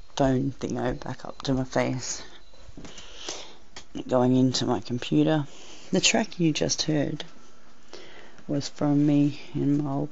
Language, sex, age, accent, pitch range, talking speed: English, female, 30-49, Australian, 120-150 Hz, 125 wpm